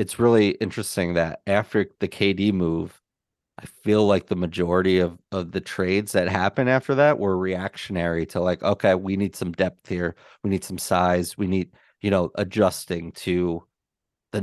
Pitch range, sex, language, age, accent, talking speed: 90-105 Hz, male, English, 30-49, American, 175 wpm